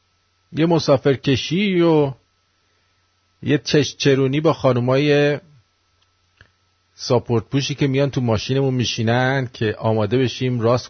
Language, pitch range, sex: English, 95-150 Hz, male